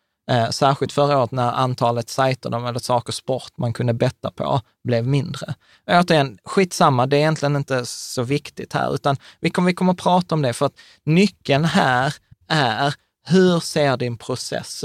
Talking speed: 170 wpm